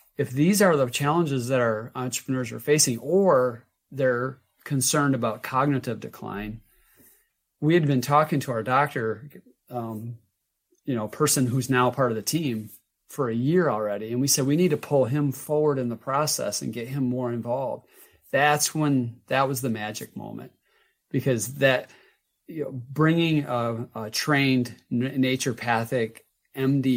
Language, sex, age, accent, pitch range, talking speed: English, male, 40-59, American, 115-140 Hz, 155 wpm